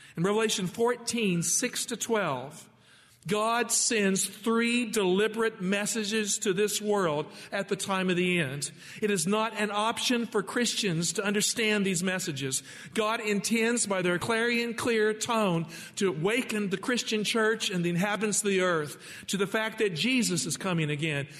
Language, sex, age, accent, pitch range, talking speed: English, male, 50-69, American, 180-225 Hz, 155 wpm